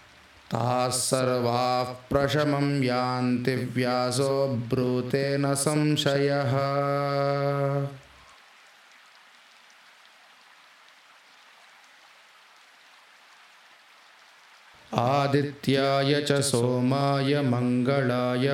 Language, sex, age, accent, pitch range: Hindi, male, 30-49, native, 125-140 Hz